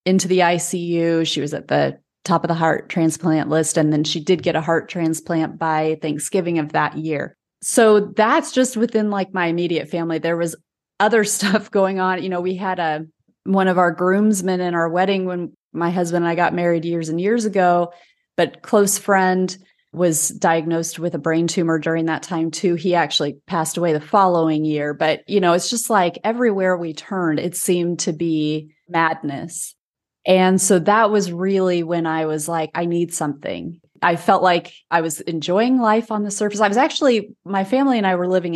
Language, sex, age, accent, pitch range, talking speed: English, female, 30-49, American, 160-195 Hz, 200 wpm